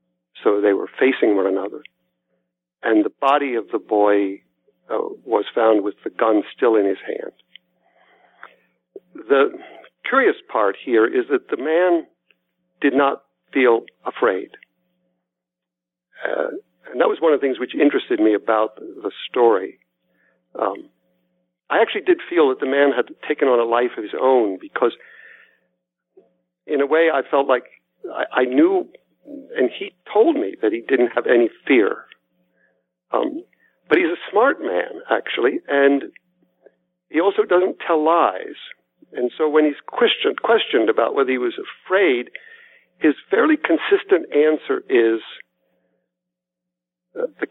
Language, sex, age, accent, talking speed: English, male, 50-69, American, 145 wpm